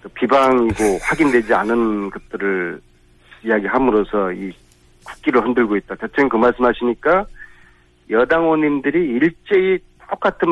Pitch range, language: 95-145 Hz, Korean